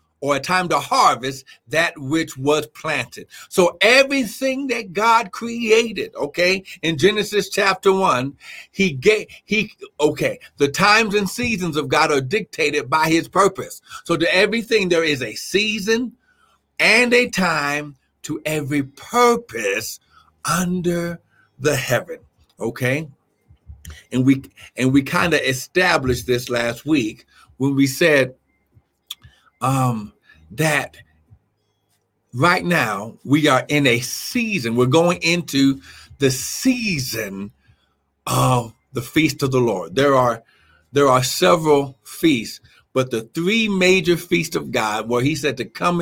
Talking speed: 135 wpm